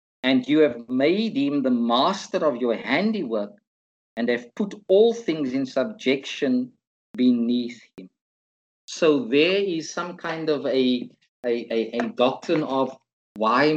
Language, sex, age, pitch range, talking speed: English, male, 50-69, 115-155 Hz, 140 wpm